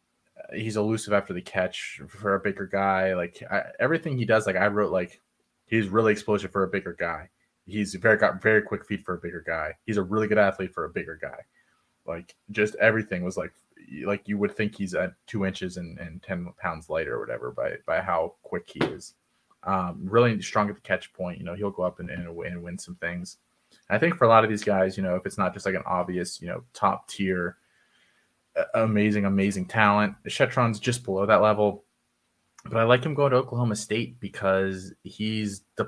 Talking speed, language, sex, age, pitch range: 215 wpm, English, male, 20-39, 95-105 Hz